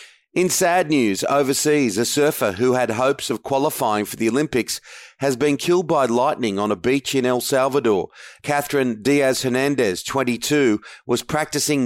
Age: 40-59